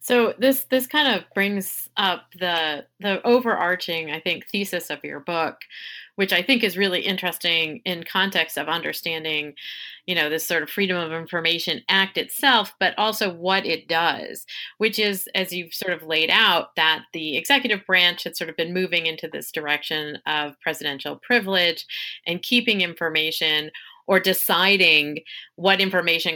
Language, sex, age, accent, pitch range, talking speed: English, female, 30-49, American, 155-195 Hz, 160 wpm